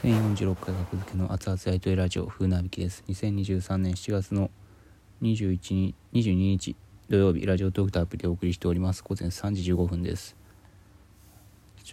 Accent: native